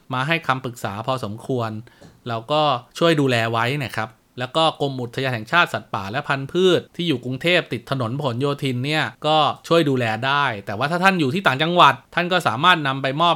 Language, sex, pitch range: Thai, male, 120-160 Hz